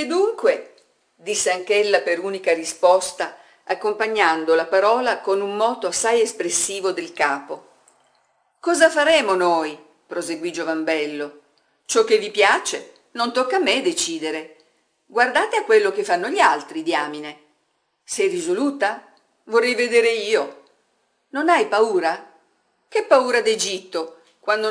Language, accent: Italian, native